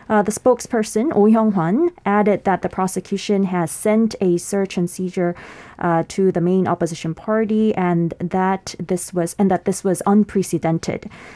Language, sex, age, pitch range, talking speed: English, female, 20-39, 175-215 Hz, 160 wpm